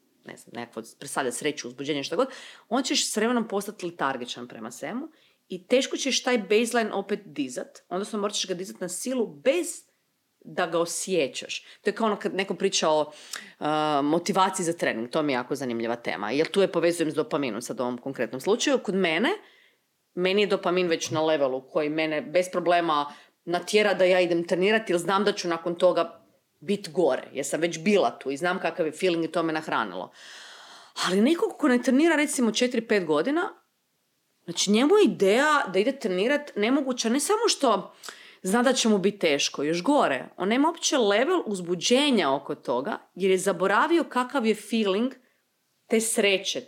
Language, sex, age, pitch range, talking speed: Croatian, female, 30-49, 170-245 Hz, 180 wpm